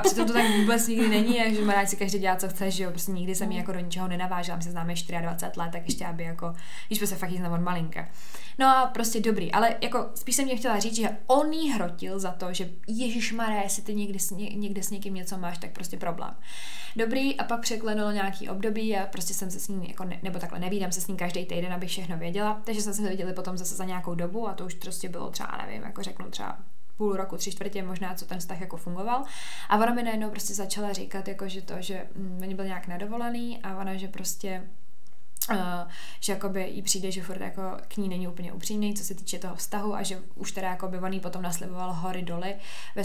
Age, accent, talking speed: 20-39, native, 240 wpm